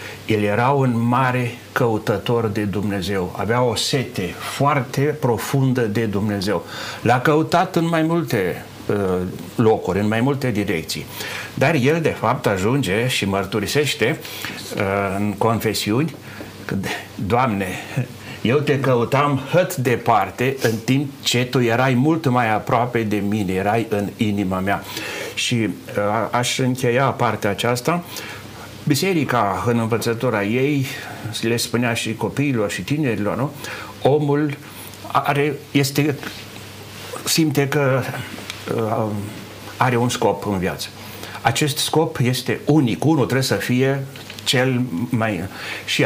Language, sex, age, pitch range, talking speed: Romanian, male, 60-79, 105-140 Hz, 120 wpm